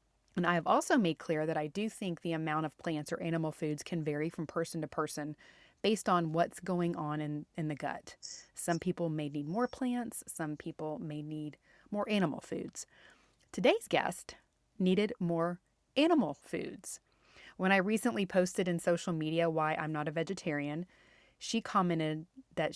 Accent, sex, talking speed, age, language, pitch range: American, female, 175 wpm, 30-49, English, 155-180 Hz